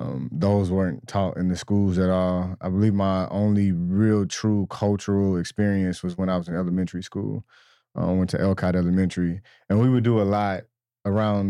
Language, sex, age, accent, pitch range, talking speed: English, male, 20-39, American, 90-105 Hz, 195 wpm